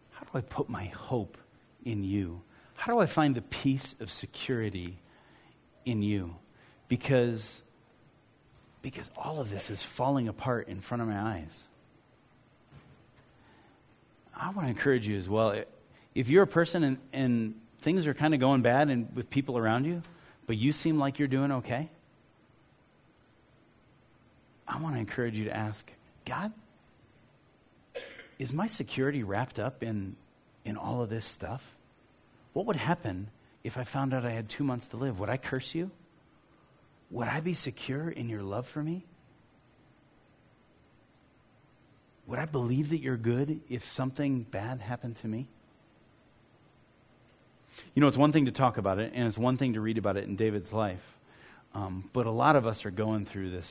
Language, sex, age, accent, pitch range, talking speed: English, male, 30-49, American, 110-140 Hz, 165 wpm